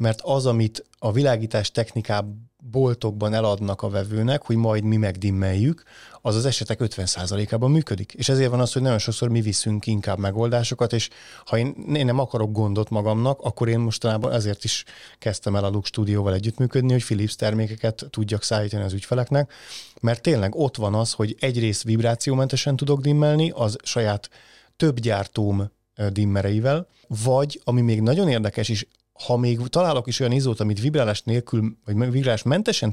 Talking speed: 160 wpm